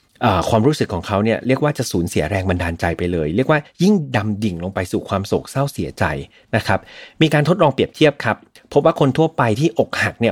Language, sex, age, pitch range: Thai, male, 30-49, 105-140 Hz